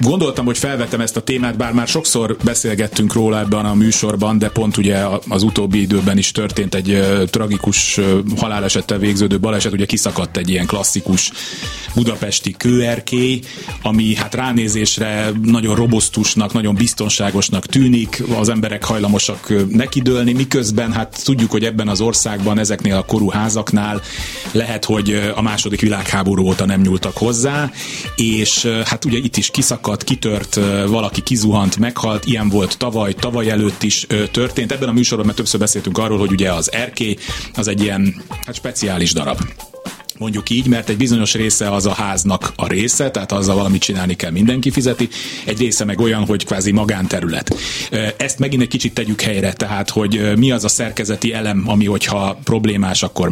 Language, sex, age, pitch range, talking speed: Hungarian, male, 30-49, 100-120 Hz, 160 wpm